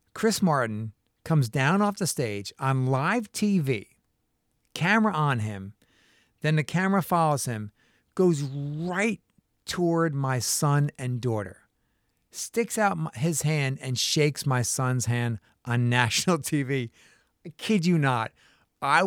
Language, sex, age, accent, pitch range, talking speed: English, male, 50-69, American, 125-175 Hz, 130 wpm